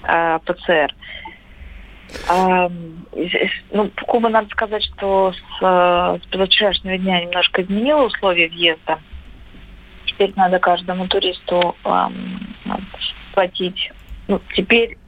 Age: 30-49